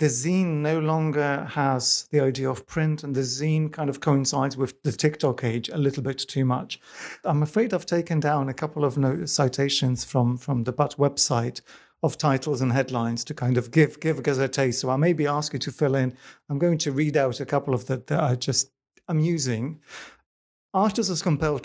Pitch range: 130-155 Hz